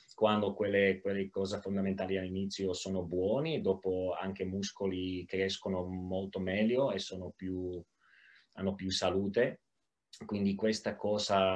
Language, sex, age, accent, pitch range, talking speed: Italian, male, 30-49, native, 95-110 Hz, 125 wpm